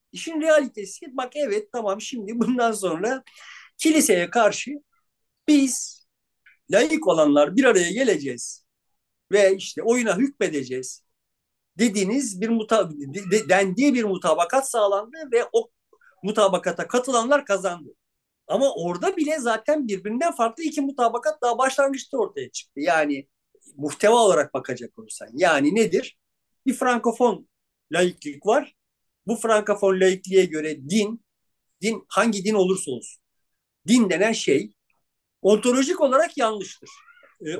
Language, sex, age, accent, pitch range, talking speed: Turkish, male, 50-69, native, 185-270 Hz, 115 wpm